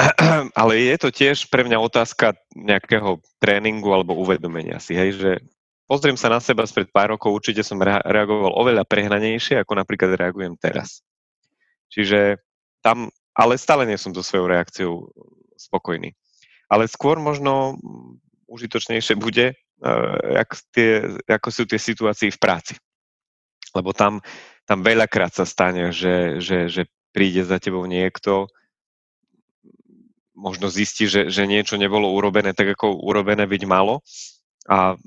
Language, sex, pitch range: Slovak, male, 95-110 Hz